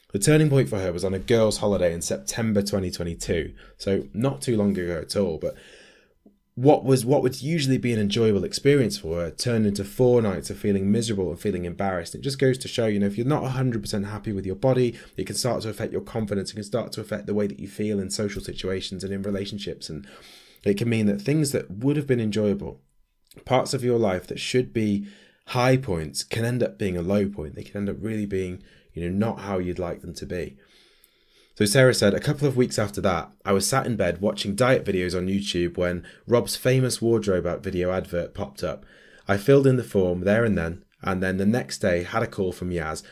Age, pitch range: 20-39, 95-120 Hz